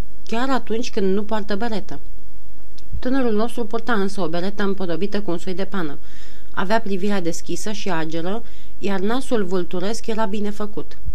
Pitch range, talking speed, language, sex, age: 175-220 Hz, 155 wpm, Romanian, female, 40-59